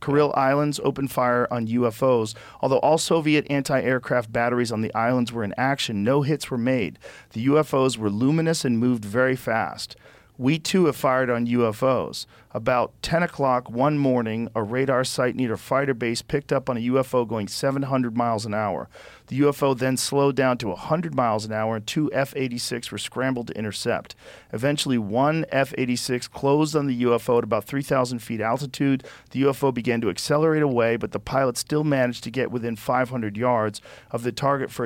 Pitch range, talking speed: 120-145 Hz, 180 wpm